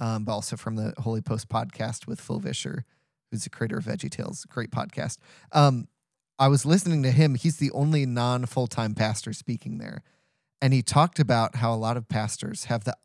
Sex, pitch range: male, 115-140 Hz